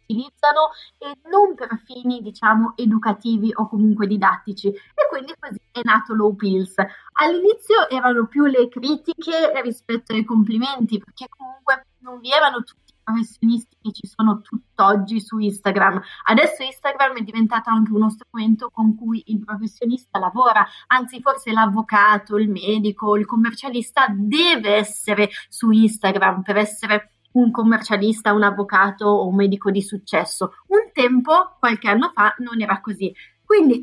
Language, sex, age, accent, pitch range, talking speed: Italian, female, 20-39, native, 205-245 Hz, 145 wpm